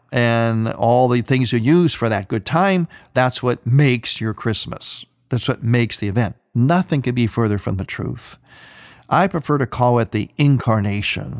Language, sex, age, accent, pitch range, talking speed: English, male, 50-69, American, 115-145 Hz, 180 wpm